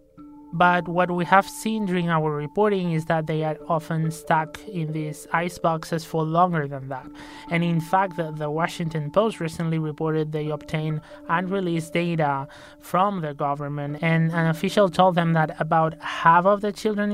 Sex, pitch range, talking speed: male, 150-175 Hz, 170 wpm